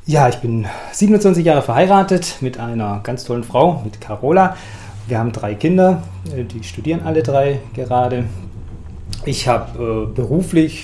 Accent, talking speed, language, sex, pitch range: German, 140 wpm, German, male, 110-140 Hz